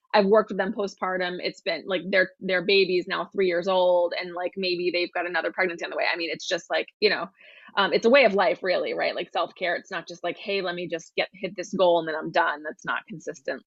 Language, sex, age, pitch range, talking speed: English, female, 20-39, 180-220 Hz, 270 wpm